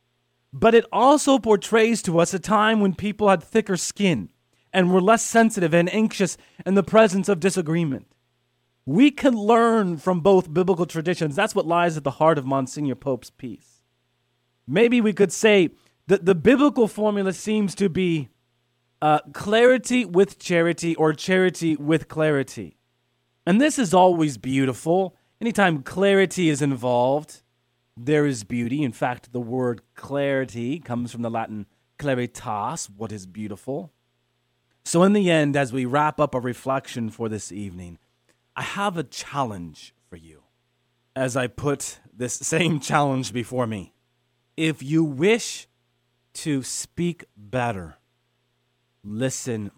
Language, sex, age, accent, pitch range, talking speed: English, male, 30-49, American, 120-185 Hz, 145 wpm